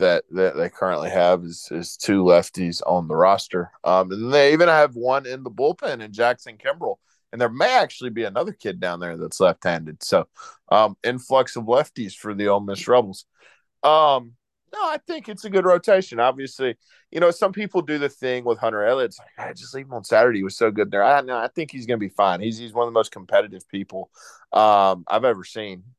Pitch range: 95-130 Hz